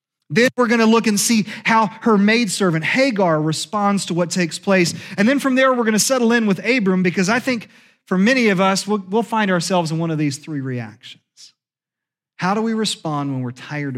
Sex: male